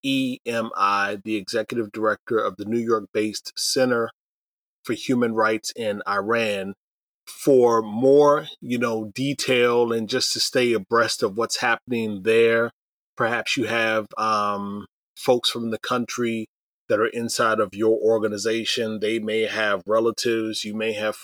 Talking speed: 140 wpm